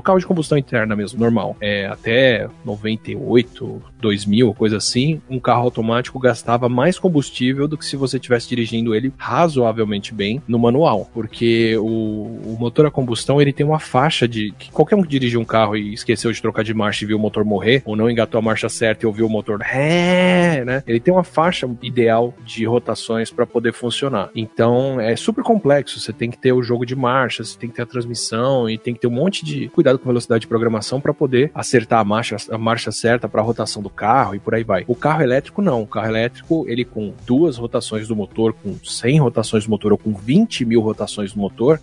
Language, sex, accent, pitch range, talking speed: Portuguese, male, Brazilian, 110-130 Hz, 220 wpm